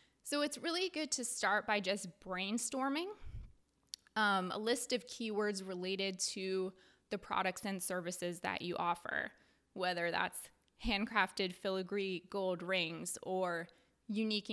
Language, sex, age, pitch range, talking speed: English, female, 20-39, 190-245 Hz, 130 wpm